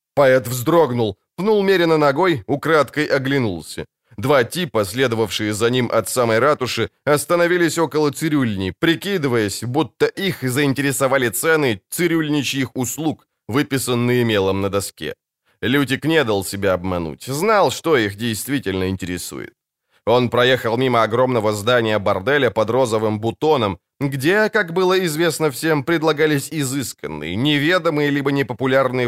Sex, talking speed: male, 120 wpm